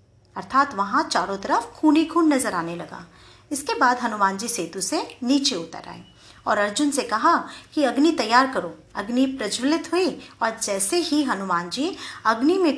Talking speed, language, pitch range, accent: 175 wpm, Hindi, 200-280 Hz, native